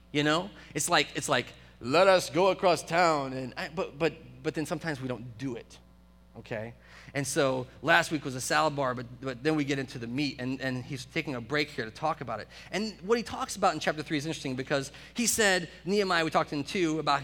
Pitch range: 115-150 Hz